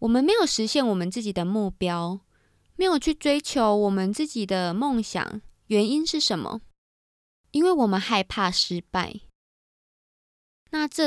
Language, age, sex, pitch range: Chinese, 20-39, female, 190-255 Hz